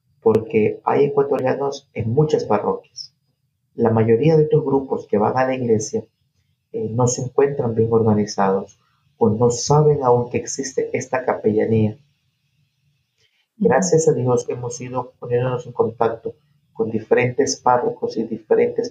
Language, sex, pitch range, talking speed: English, male, 125-175 Hz, 135 wpm